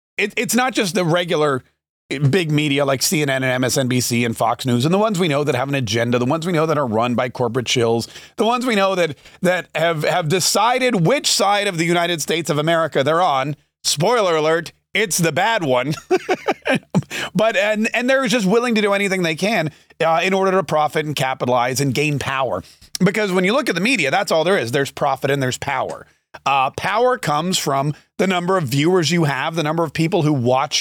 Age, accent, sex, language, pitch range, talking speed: 30-49, American, male, English, 145-200 Hz, 220 wpm